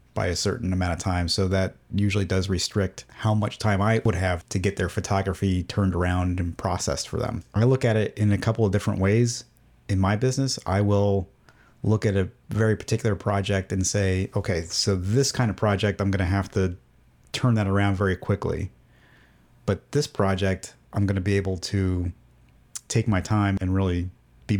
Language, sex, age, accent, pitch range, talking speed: English, male, 30-49, American, 95-110 Hz, 195 wpm